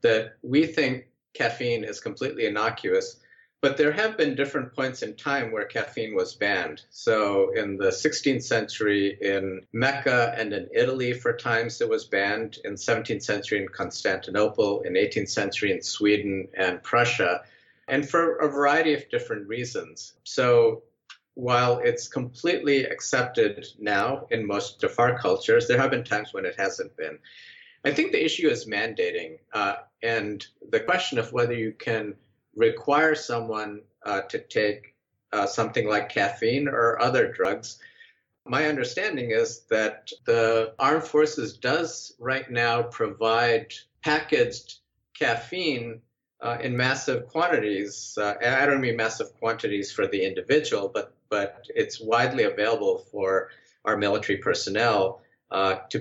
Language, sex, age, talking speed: English, male, 50-69, 145 wpm